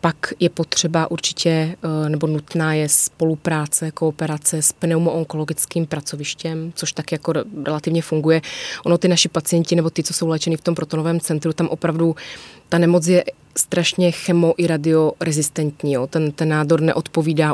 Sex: female